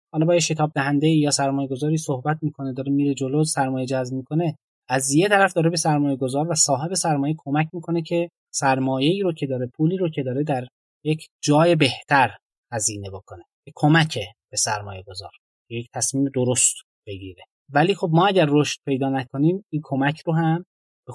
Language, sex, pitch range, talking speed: Persian, male, 125-160 Hz, 180 wpm